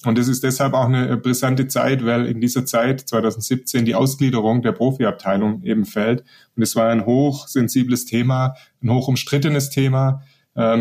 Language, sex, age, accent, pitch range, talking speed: German, male, 30-49, German, 115-135 Hz, 160 wpm